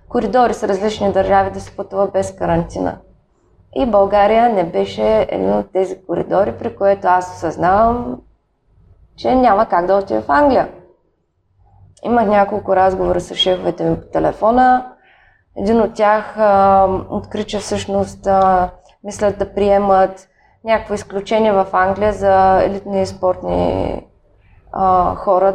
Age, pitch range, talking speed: 20-39, 180-225 Hz, 120 wpm